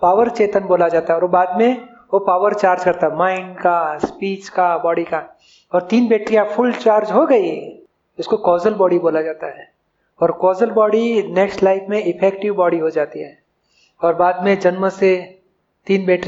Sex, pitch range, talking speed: male, 180-220 Hz, 80 wpm